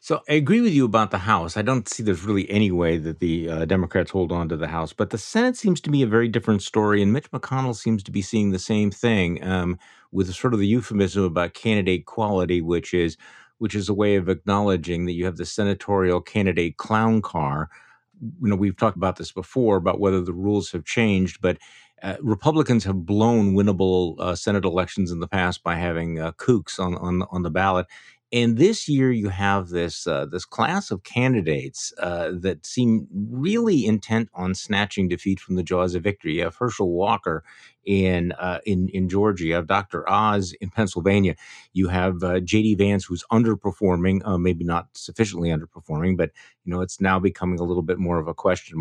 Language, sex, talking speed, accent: English, male, 205 wpm, American